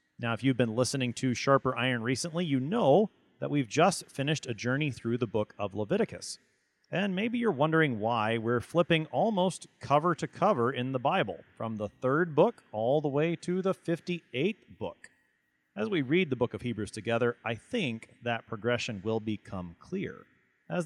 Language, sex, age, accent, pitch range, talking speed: English, male, 30-49, American, 110-150 Hz, 180 wpm